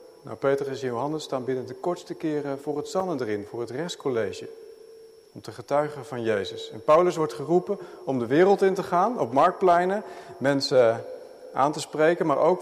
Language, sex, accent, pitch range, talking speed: Dutch, male, Dutch, 130-190 Hz, 185 wpm